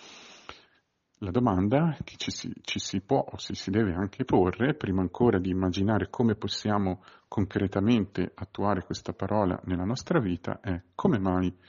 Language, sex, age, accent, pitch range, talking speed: Italian, male, 50-69, native, 95-120 Hz, 150 wpm